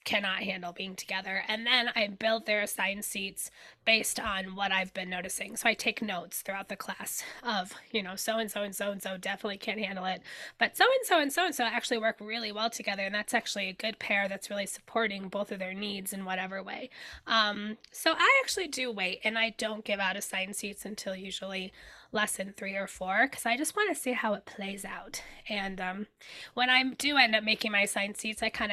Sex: female